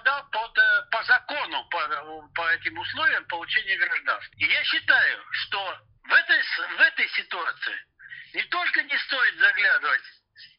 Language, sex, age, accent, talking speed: Russian, male, 60-79, native, 130 wpm